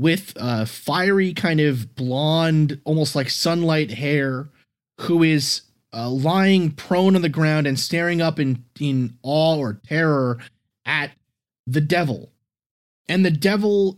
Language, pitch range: English, 130-160 Hz